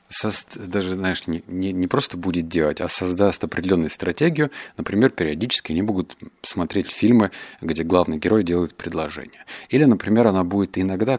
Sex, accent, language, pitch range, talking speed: male, native, Russian, 90-115 Hz, 150 wpm